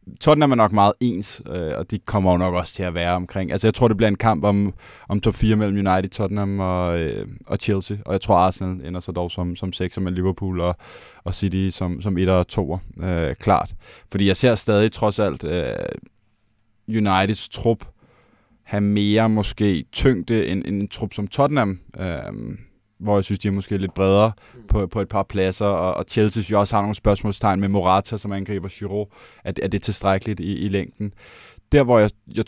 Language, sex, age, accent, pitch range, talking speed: Danish, male, 20-39, native, 95-115 Hz, 210 wpm